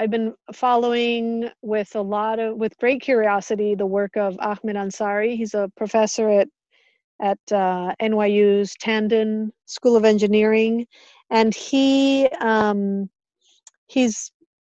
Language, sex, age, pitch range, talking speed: English, female, 40-59, 195-230 Hz, 125 wpm